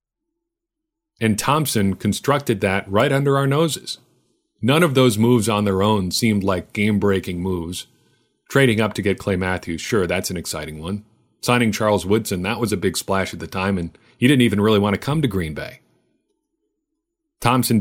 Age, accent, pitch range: 40-59, American, 95-130 Hz